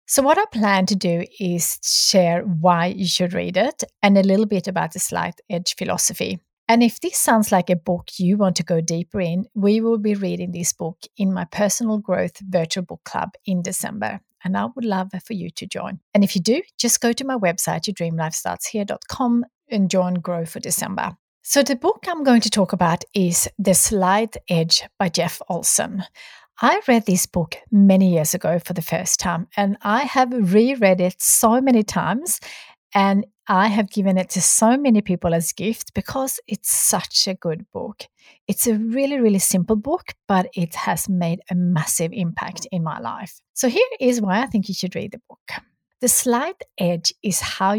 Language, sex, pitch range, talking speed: English, female, 180-225 Hz, 195 wpm